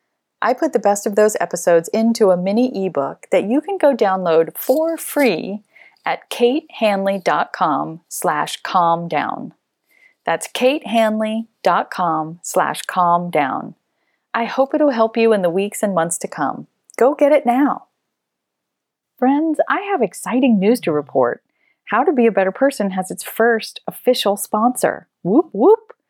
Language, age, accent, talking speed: English, 30-49, American, 145 wpm